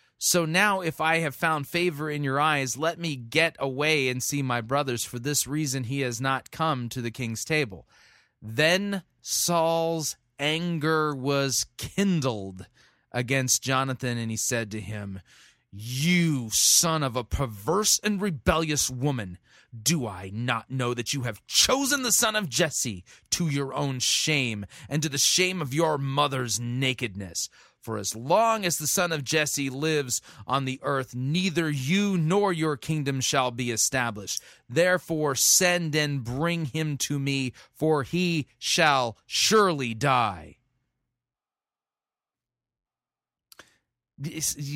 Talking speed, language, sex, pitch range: 140 wpm, English, male, 125-160 Hz